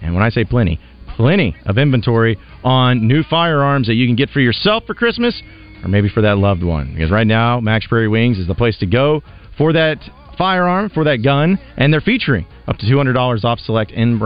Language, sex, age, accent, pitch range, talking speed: English, male, 40-59, American, 105-145 Hz, 210 wpm